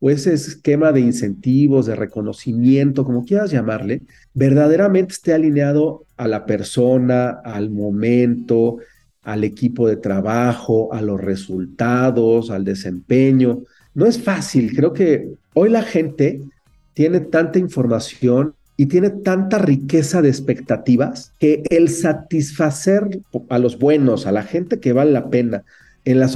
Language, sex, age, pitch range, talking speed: Spanish, male, 40-59, 120-155 Hz, 135 wpm